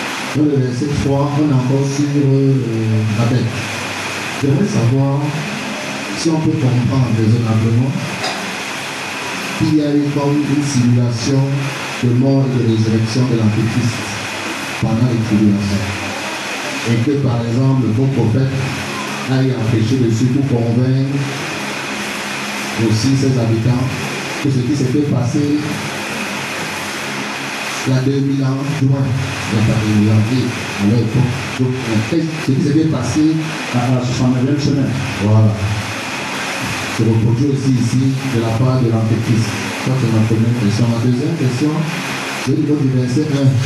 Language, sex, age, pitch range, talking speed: French, male, 50-69, 110-140 Hz, 135 wpm